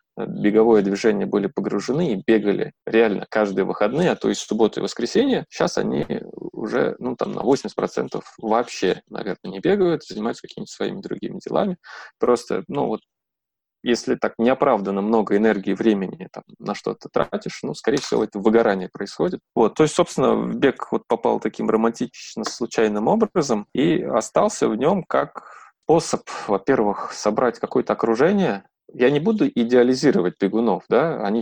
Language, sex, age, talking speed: Russian, male, 20-39, 150 wpm